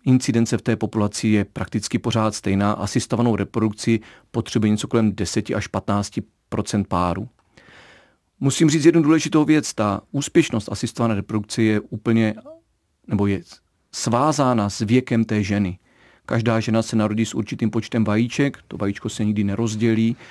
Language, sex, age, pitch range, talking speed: Czech, male, 40-59, 105-120 Hz, 140 wpm